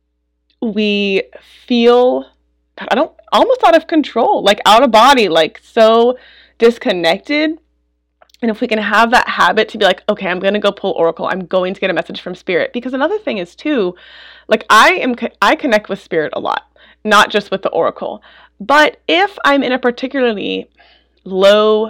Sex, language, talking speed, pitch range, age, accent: female, English, 185 wpm, 185-245 Hz, 20-39, American